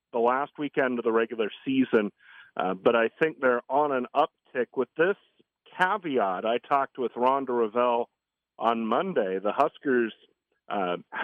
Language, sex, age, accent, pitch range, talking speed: English, male, 40-59, American, 115-140 Hz, 150 wpm